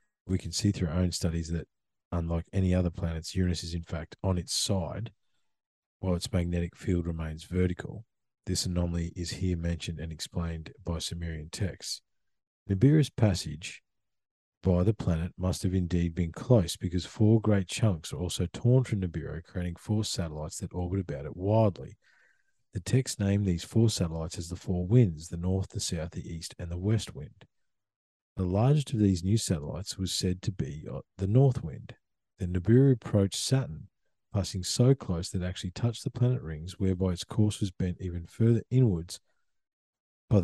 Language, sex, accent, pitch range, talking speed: English, male, Australian, 85-105 Hz, 175 wpm